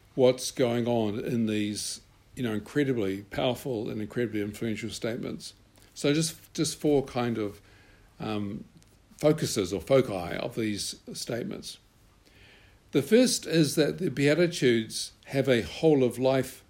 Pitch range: 105-140 Hz